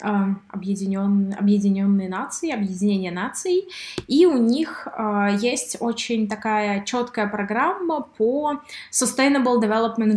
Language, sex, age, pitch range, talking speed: Russian, female, 20-39, 205-255 Hz, 95 wpm